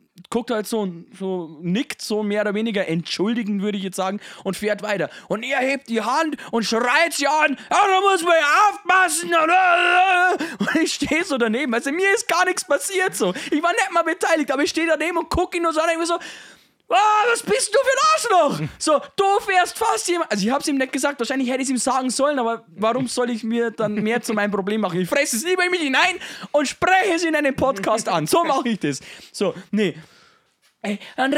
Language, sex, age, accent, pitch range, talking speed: German, male, 20-39, German, 215-330 Hz, 225 wpm